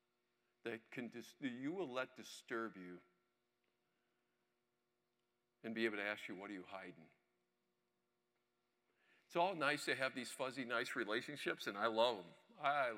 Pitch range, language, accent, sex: 110-145 Hz, English, American, male